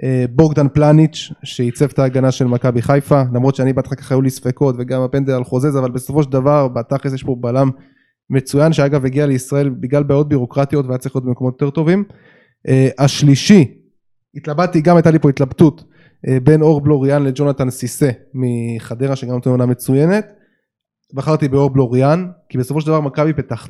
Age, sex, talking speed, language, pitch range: 20-39, male, 165 wpm, Hebrew, 130-160 Hz